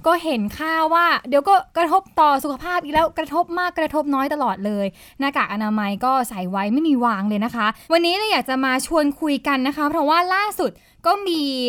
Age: 20-39